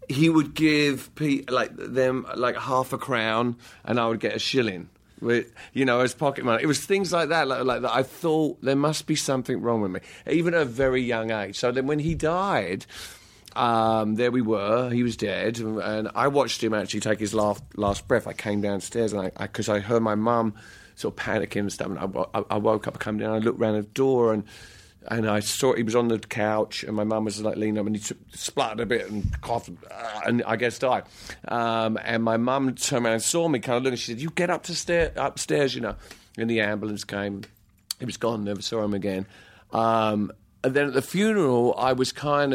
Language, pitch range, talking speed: English, 105-130 Hz, 235 wpm